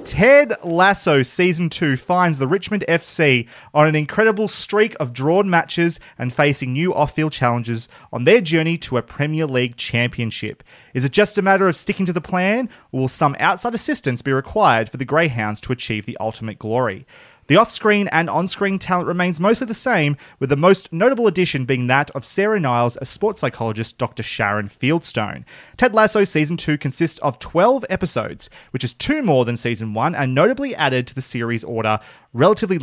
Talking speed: 185 wpm